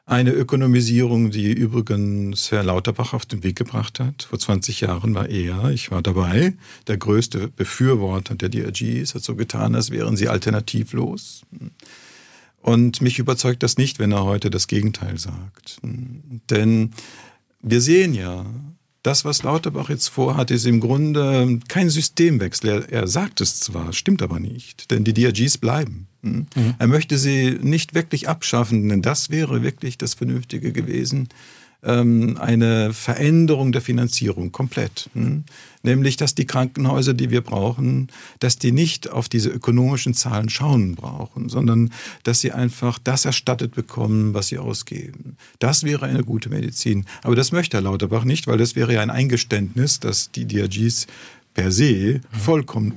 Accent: German